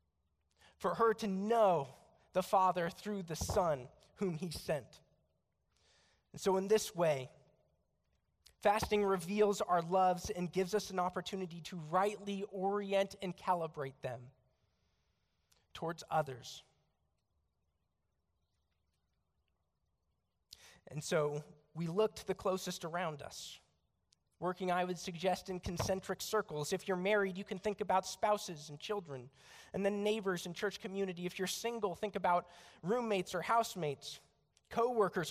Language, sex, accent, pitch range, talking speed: English, male, American, 130-205 Hz, 125 wpm